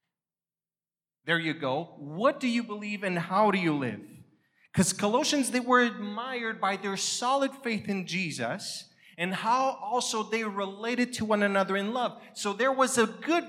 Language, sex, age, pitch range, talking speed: English, male, 30-49, 195-245 Hz, 170 wpm